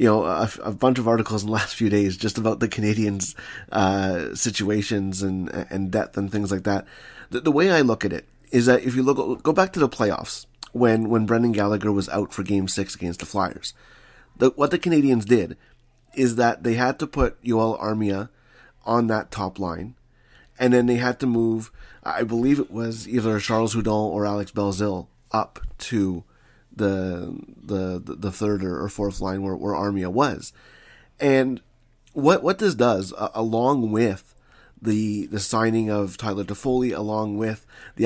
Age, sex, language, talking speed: 30-49, male, English, 185 wpm